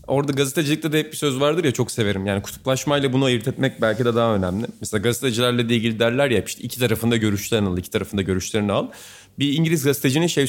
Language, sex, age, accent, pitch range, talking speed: Turkish, male, 30-49, native, 110-150 Hz, 215 wpm